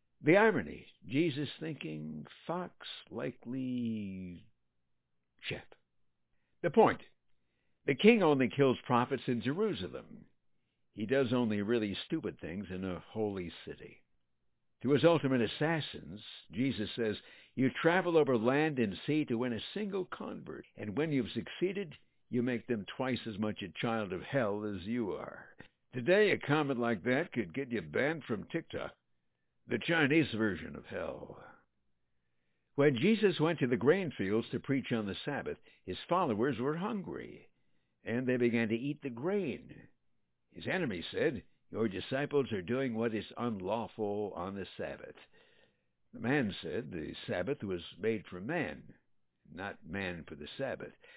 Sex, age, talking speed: male, 60-79, 150 wpm